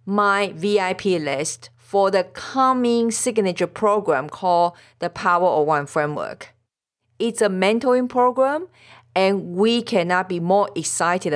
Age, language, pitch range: 50-69, English, 155-215 Hz